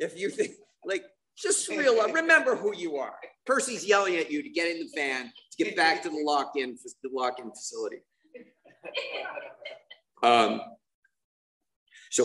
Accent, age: American, 50-69